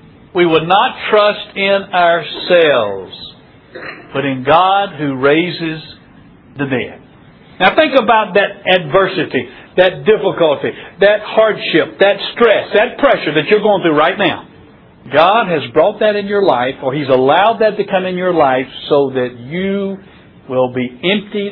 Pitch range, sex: 155-225 Hz, male